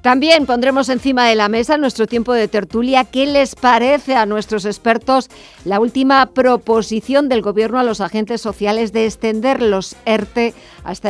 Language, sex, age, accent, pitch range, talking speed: Spanish, female, 50-69, Spanish, 205-250 Hz, 170 wpm